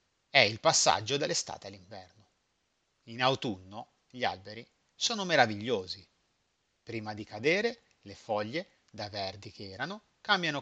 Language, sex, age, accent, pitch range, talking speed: Italian, male, 30-49, native, 100-145 Hz, 120 wpm